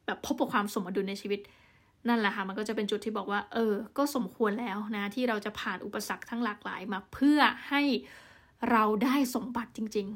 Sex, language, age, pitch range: female, Thai, 20-39, 210-255 Hz